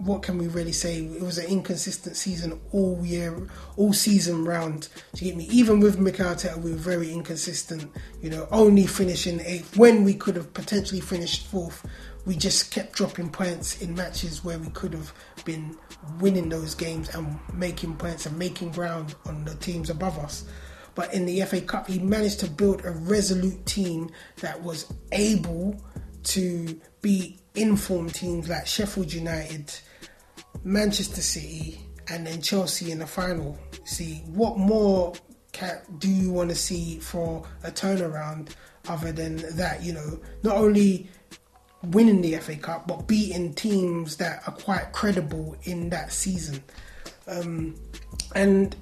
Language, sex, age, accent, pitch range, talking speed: English, male, 20-39, British, 165-195 Hz, 155 wpm